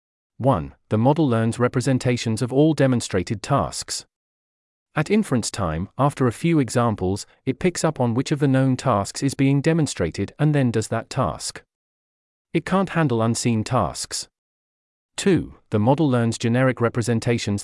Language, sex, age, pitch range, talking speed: English, male, 40-59, 110-140 Hz, 150 wpm